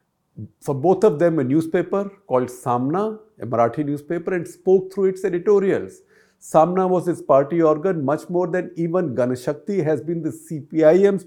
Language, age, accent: English, 50-69, Indian